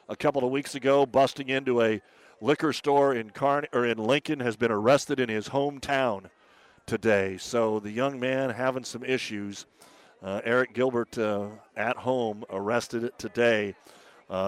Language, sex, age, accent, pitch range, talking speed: English, male, 50-69, American, 115-145 Hz, 160 wpm